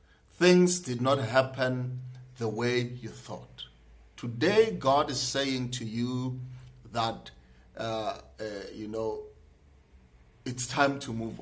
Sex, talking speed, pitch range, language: male, 120 wpm, 115-145 Hz, English